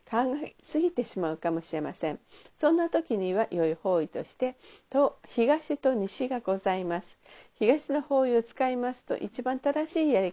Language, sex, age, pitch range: Japanese, female, 50-69, 190-270 Hz